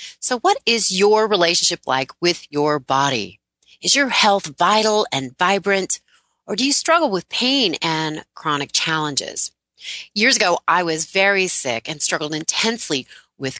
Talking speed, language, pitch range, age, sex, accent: 150 wpm, English, 145-195 Hz, 30-49, female, American